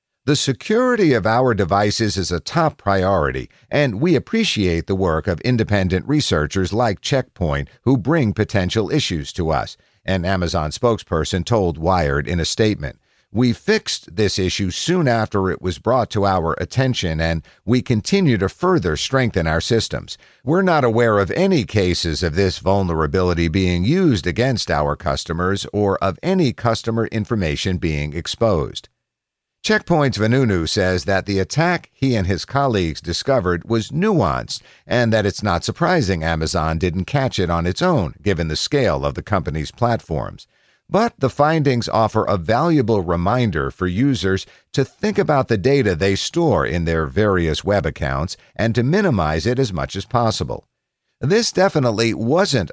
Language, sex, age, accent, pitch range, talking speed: English, male, 50-69, American, 90-130 Hz, 155 wpm